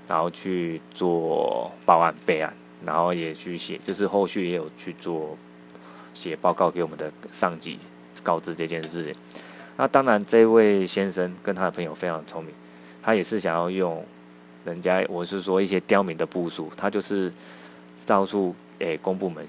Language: Chinese